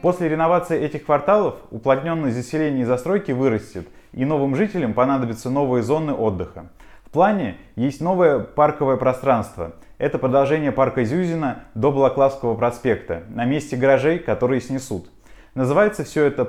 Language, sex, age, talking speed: Russian, male, 20-39, 135 wpm